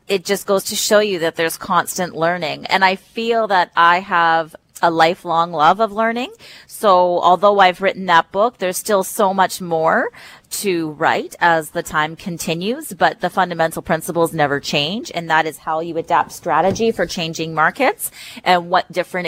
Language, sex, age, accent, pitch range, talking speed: English, female, 30-49, American, 165-195 Hz, 175 wpm